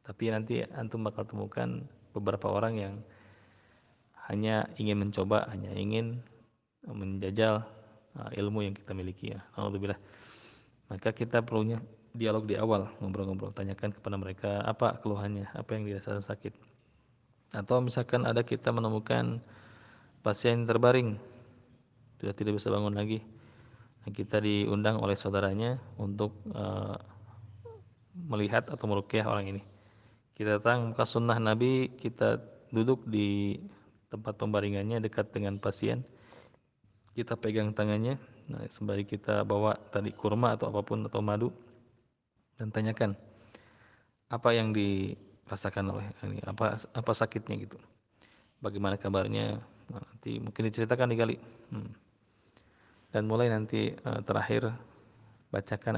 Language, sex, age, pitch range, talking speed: Malay, male, 20-39, 100-115 Hz, 115 wpm